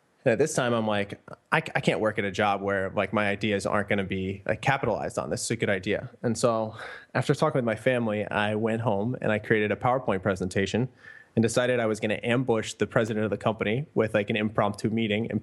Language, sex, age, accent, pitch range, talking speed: English, male, 20-39, American, 105-125 Hz, 245 wpm